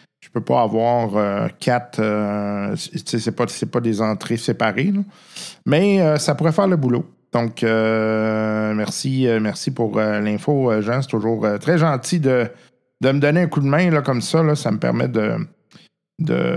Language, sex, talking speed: French, male, 185 wpm